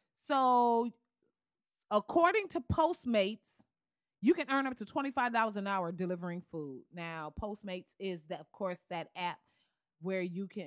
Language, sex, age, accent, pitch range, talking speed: English, female, 30-49, American, 185-250 Hz, 140 wpm